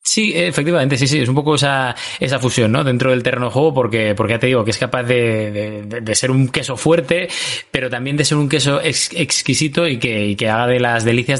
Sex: male